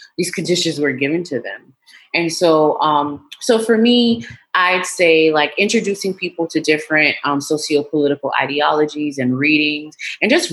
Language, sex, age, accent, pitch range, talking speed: English, female, 30-49, American, 145-195 Hz, 150 wpm